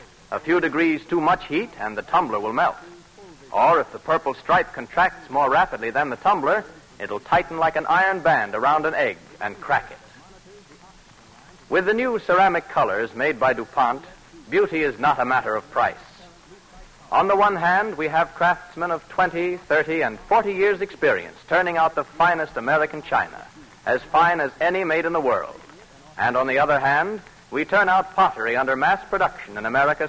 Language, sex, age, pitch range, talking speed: English, male, 60-79, 135-185 Hz, 180 wpm